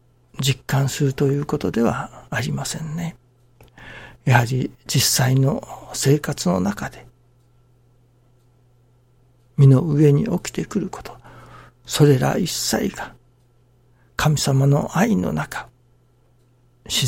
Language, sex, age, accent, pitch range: Japanese, male, 60-79, native, 125-140 Hz